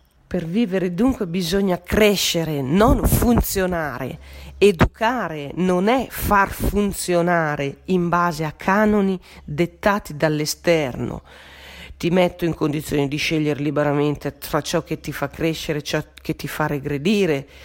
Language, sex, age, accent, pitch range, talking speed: Italian, female, 40-59, native, 150-200 Hz, 125 wpm